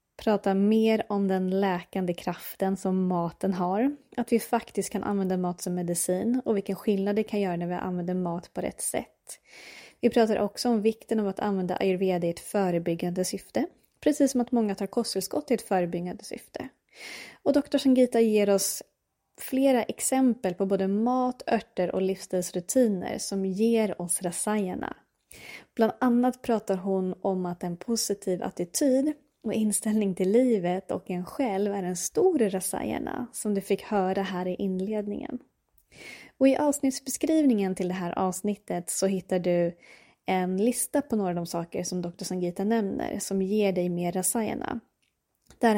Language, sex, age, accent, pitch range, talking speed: Swedish, female, 20-39, native, 185-230 Hz, 165 wpm